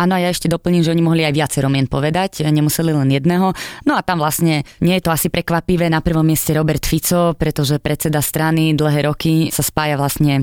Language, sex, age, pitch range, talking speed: Slovak, female, 20-39, 150-170 Hz, 200 wpm